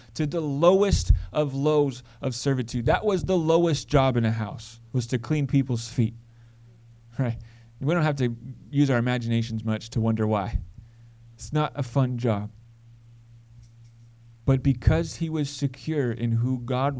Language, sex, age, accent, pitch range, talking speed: English, male, 30-49, American, 115-135 Hz, 160 wpm